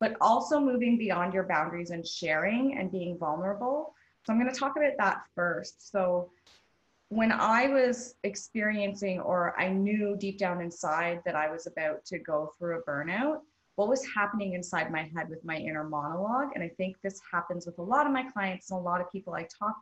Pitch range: 170-215 Hz